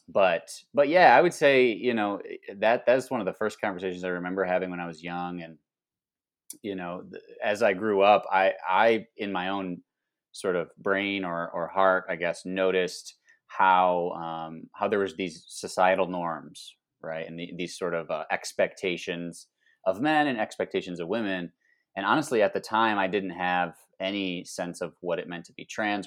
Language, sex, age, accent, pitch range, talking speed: English, male, 30-49, American, 85-100 Hz, 190 wpm